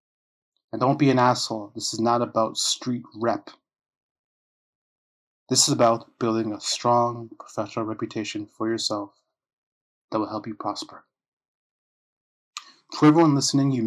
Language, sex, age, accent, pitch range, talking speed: English, male, 30-49, American, 110-135 Hz, 130 wpm